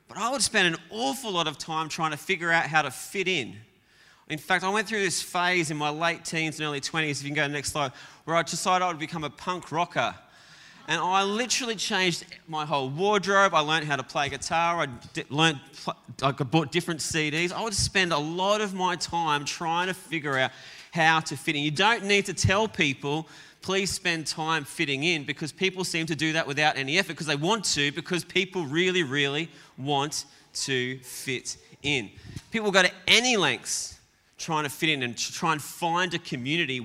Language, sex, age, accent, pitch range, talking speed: English, male, 20-39, Australian, 145-185 Hz, 210 wpm